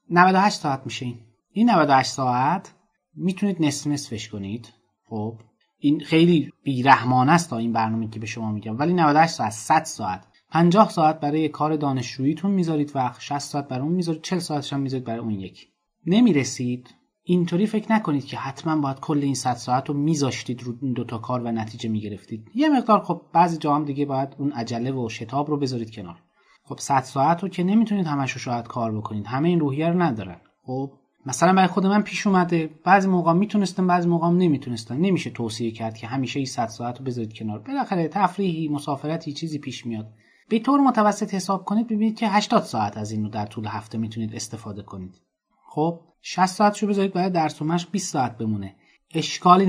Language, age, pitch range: Persian, 30-49, 115-175 Hz